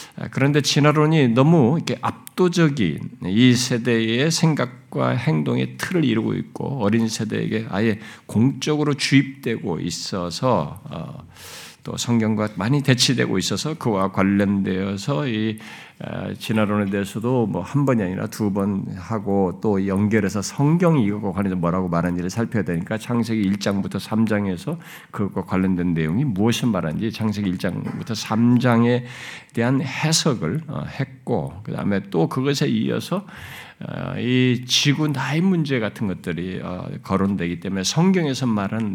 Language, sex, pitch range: Korean, male, 100-135 Hz